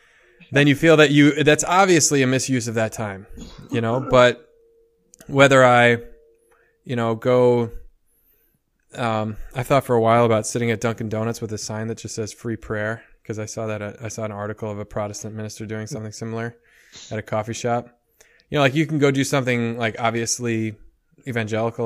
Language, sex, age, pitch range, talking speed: English, male, 20-39, 110-135 Hz, 190 wpm